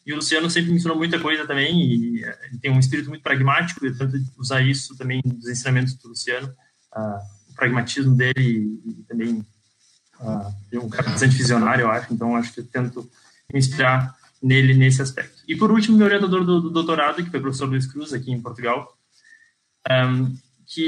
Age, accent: 20-39, Brazilian